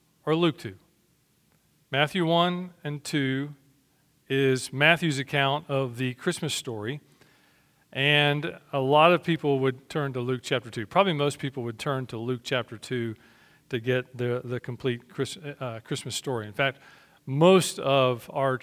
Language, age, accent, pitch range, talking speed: English, 40-59, American, 125-155 Hz, 150 wpm